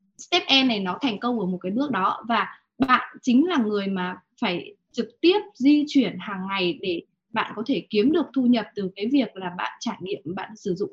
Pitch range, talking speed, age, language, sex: 195-265 Hz, 230 wpm, 20-39, Vietnamese, female